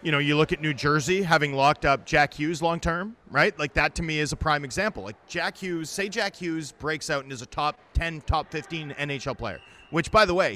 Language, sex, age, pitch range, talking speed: English, male, 30-49, 140-175 Hz, 245 wpm